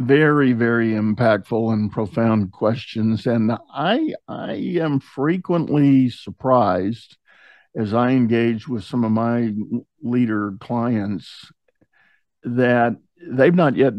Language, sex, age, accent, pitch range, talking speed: English, male, 50-69, American, 110-125 Hz, 105 wpm